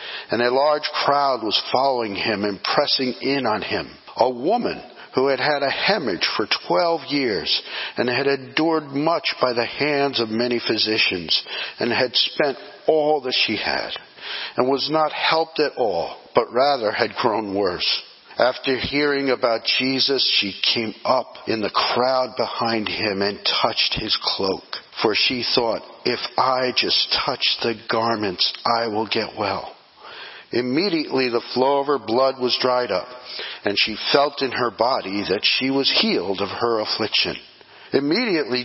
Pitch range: 115-145 Hz